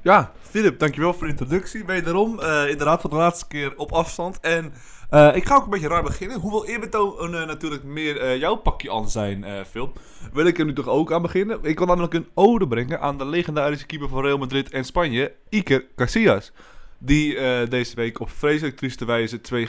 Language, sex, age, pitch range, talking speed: Dutch, male, 20-39, 120-160 Hz, 210 wpm